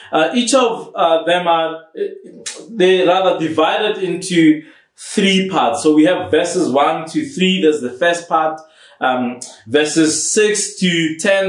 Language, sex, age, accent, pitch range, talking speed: English, male, 20-39, South African, 130-180 Hz, 145 wpm